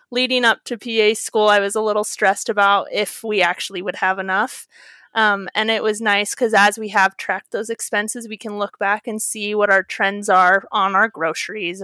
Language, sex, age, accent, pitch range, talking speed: English, female, 30-49, American, 200-225 Hz, 215 wpm